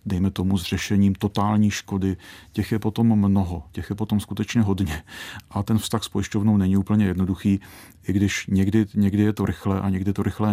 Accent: native